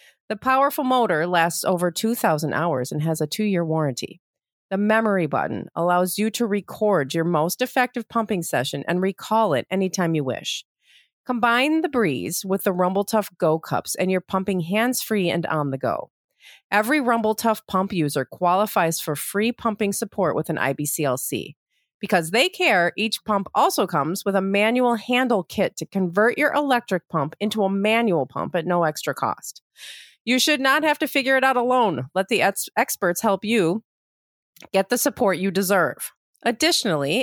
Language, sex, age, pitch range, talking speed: English, female, 40-59, 175-235 Hz, 165 wpm